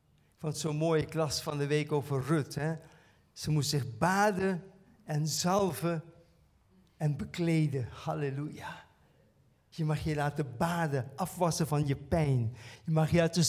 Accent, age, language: Dutch, 50-69, Dutch